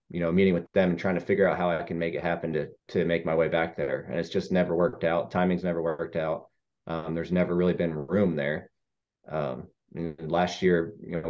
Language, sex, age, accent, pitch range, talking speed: English, male, 30-49, American, 80-95 Hz, 245 wpm